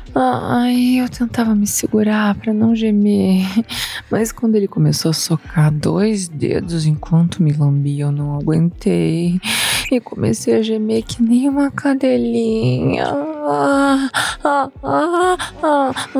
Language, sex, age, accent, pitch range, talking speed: Portuguese, female, 20-39, Brazilian, 155-215 Hz, 120 wpm